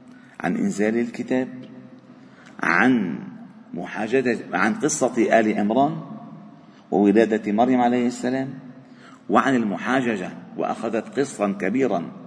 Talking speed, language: 85 wpm, Arabic